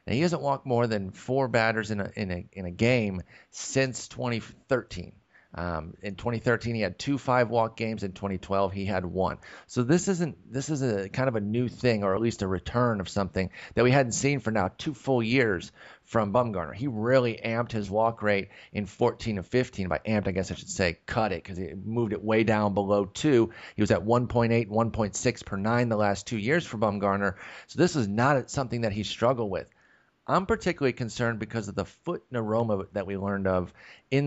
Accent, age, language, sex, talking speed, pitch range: American, 30-49, English, male, 215 wpm, 100-125 Hz